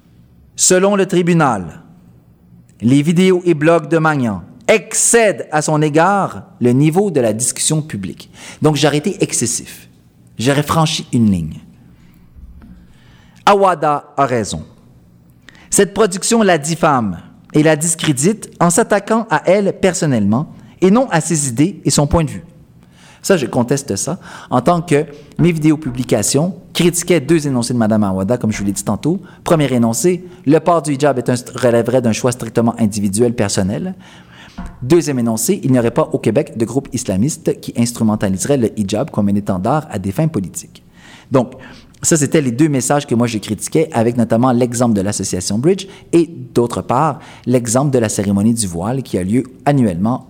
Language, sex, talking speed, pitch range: French, male, 170 wpm, 110-175 Hz